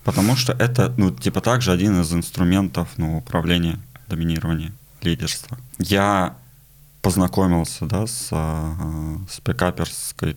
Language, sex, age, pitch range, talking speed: Russian, male, 20-39, 85-125 Hz, 110 wpm